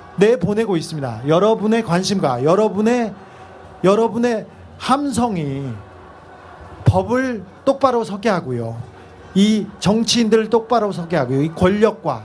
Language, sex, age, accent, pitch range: Korean, male, 40-59, native, 180-250 Hz